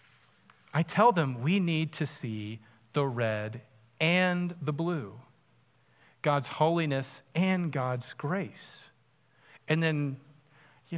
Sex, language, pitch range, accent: male, English, 130-185 Hz, American